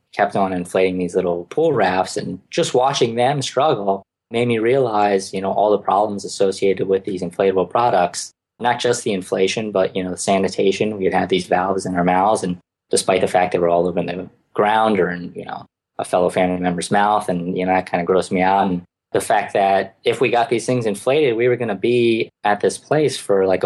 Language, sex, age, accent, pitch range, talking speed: English, male, 20-39, American, 90-105 Hz, 230 wpm